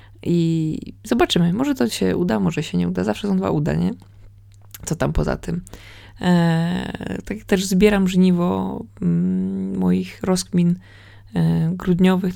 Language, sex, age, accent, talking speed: Polish, female, 20-39, native, 135 wpm